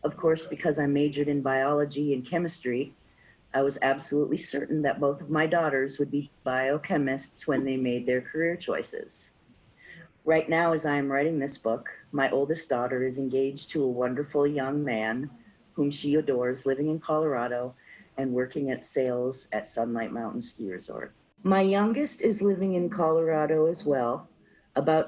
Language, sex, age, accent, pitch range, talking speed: English, female, 40-59, American, 130-160 Hz, 165 wpm